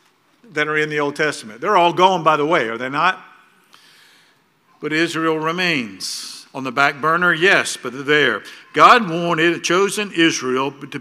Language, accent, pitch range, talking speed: English, American, 150-185 Hz, 175 wpm